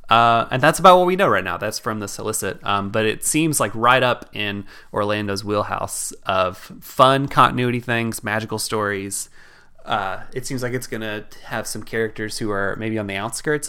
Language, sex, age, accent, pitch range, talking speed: English, male, 20-39, American, 100-115 Hz, 195 wpm